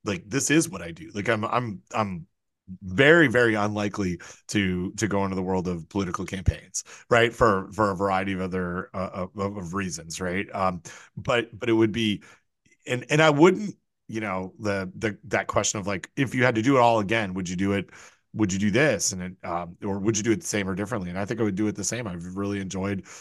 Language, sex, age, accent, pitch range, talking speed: English, male, 30-49, American, 95-115 Hz, 240 wpm